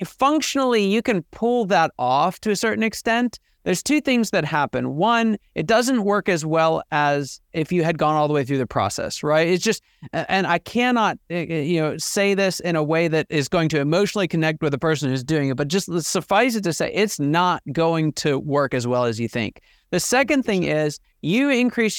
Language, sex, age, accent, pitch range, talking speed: English, male, 30-49, American, 145-200 Hz, 215 wpm